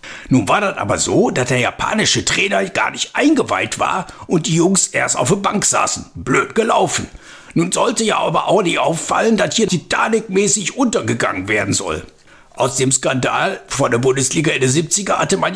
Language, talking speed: German, 185 wpm